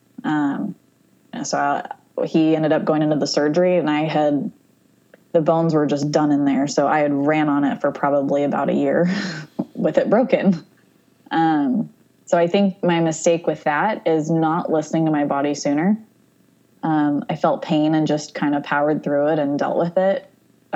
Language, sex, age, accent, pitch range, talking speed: English, female, 20-39, American, 145-170 Hz, 190 wpm